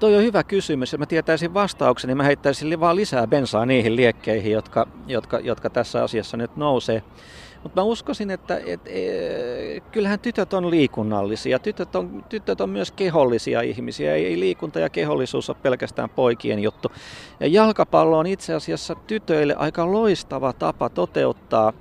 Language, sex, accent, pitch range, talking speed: Finnish, male, native, 115-175 Hz, 155 wpm